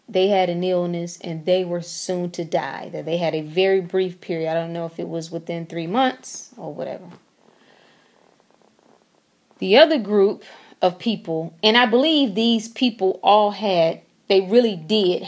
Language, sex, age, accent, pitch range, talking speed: English, female, 30-49, American, 180-230 Hz, 170 wpm